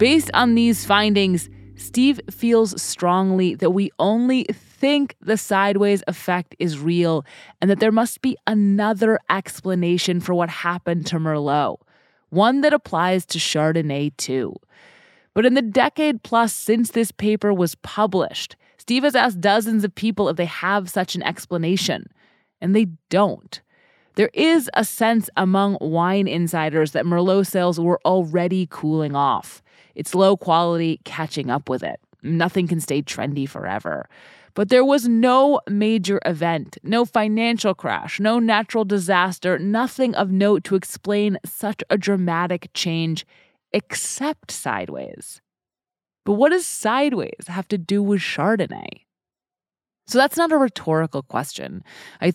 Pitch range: 170-225 Hz